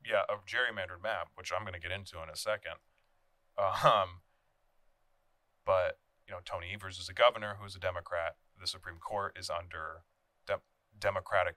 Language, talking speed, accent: English, 165 wpm, American